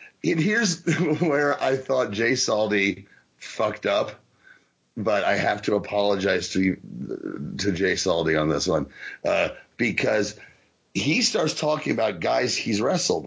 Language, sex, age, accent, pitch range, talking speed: English, male, 30-49, American, 105-155 Hz, 140 wpm